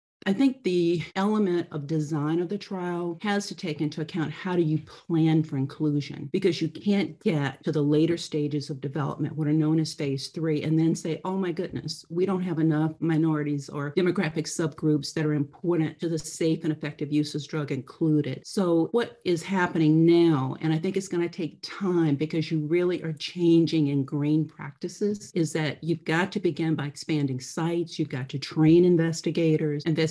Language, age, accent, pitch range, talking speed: English, 50-69, American, 150-175 Hz, 195 wpm